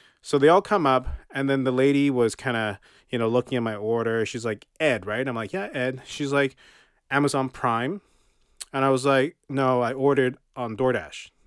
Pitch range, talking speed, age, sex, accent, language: 115-135 Hz, 200 wpm, 30-49, male, American, English